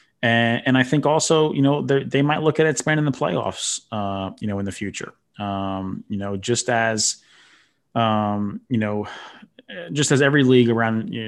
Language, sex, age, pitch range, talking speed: English, male, 20-39, 105-125 Hz, 185 wpm